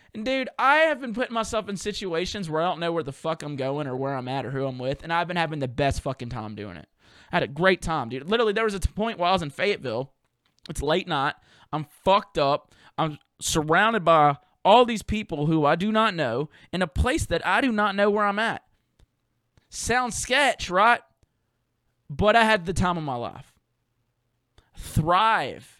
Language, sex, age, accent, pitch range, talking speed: English, male, 20-39, American, 125-185 Hz, 215 wpm